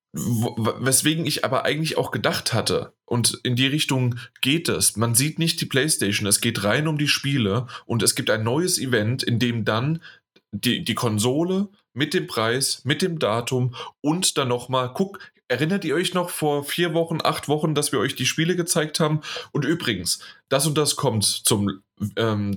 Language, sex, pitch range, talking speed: German, male, 115-150 Hz, 185 wpm